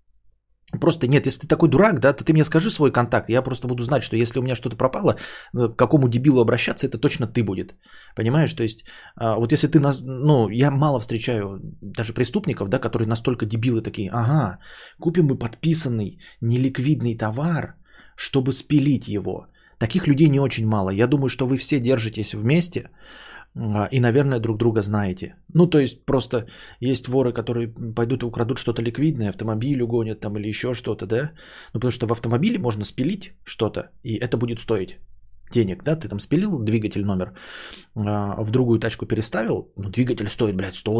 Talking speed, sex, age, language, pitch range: 175 wpm, male, 20-39, Bulgarian, 110-135 Hz